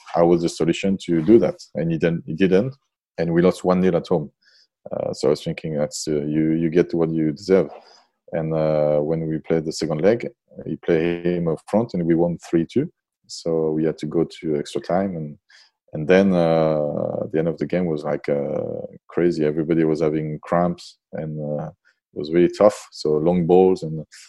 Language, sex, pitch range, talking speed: English, male, 80-90 Hz, 210 wpm